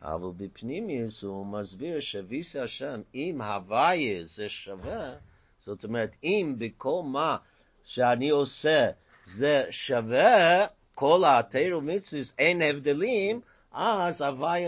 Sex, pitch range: male, 95-150 Hz